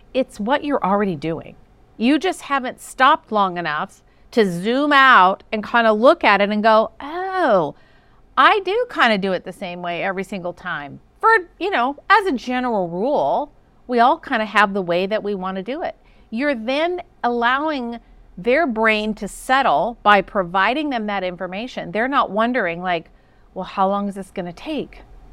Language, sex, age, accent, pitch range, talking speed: English, female, 40-59, American, 200-285 Hz, 185 wpm